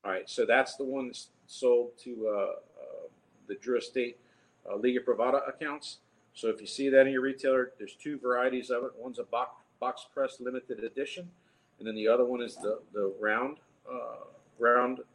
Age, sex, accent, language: 50-69, male, American, English